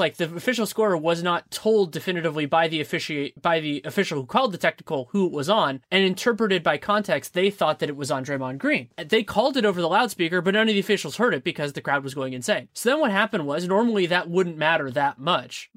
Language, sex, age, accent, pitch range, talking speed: English, male, 20-39, American, 160-200 Hz, 245 wpm